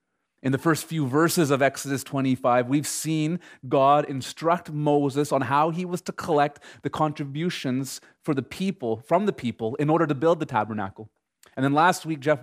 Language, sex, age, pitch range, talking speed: English, male, 30-49, 125-150 Hz, 185 wpm